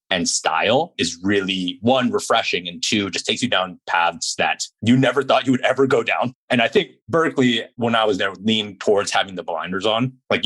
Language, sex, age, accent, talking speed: English, male, 30-49, American, 210 wpm